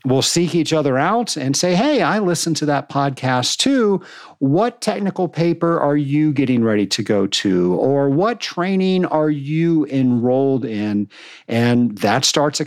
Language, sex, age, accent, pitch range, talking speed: English, male, 50-69, American, 125-160 Hz, 165 wpm